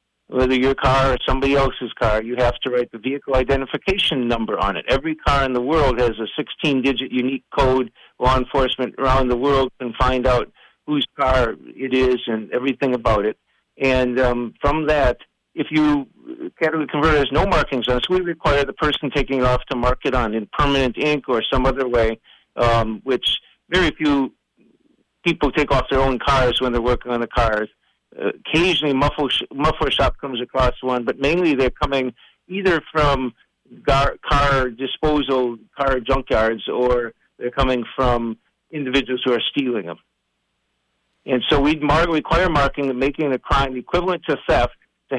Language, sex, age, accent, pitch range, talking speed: English, male, 50-69, American, 125-140 Hz, 175 wpm